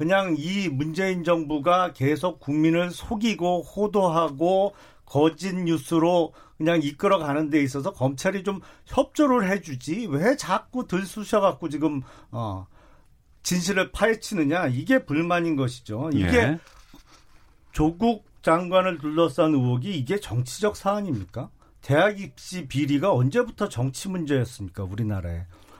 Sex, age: male, 40-59